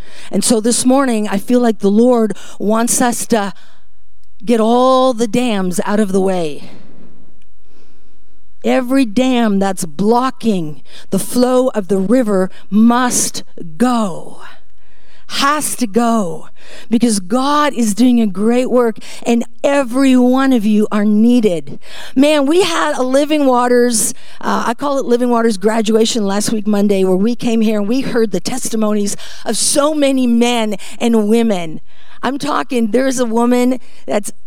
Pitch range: 215-285 Hz